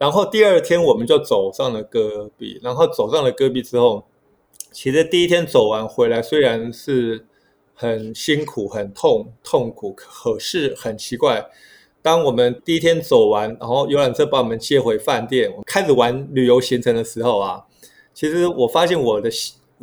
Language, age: Chinese, 20-39